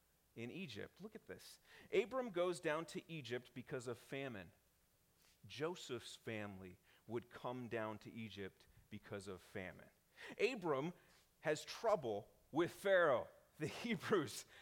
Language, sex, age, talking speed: English, male, 40-59, 125 wpm